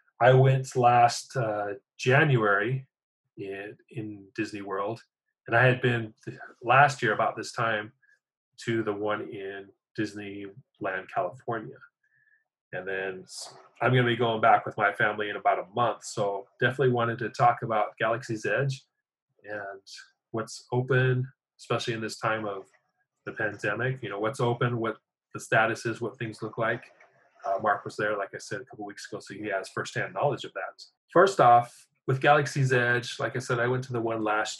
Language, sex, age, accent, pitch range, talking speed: English, male, 30-49, American, 110-130 Hz, 175 wpm